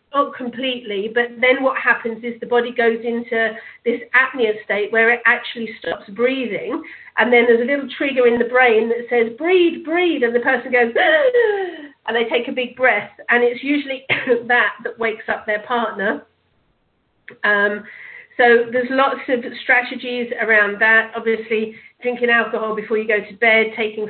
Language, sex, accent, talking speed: English, female, British, 170 wpm